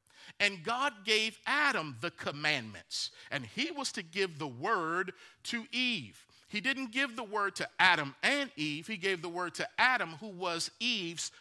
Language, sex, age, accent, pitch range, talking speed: English, male, 40-59, American, 145-215 Hz, 175 wpm